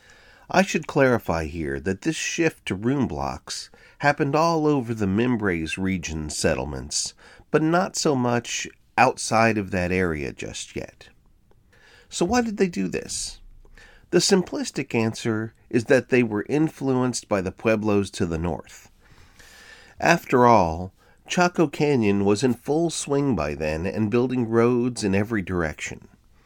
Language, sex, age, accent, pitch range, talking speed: English, male, 40-59, American, 100-145 Hz, 145 wpm